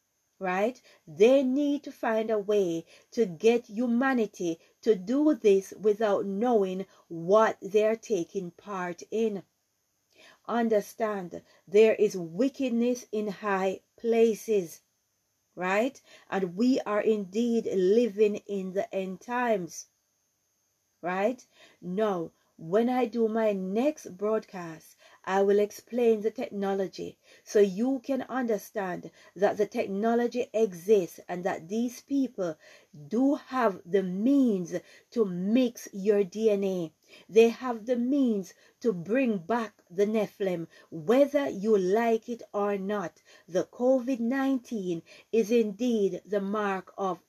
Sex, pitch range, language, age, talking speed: female, 190-230 Hz, English, 40-59, 115 wpm